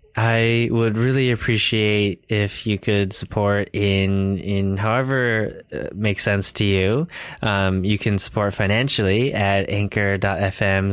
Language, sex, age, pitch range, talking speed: English, male, 20-39, 95-110 Hz, 125 wpm